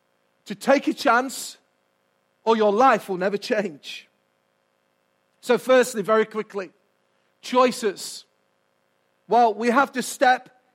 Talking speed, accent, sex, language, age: 110 wpm, British, male, English, 40-59